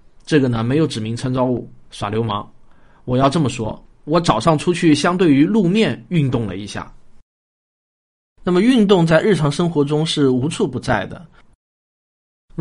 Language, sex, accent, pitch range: Chinese, male, native, 120-175 Hz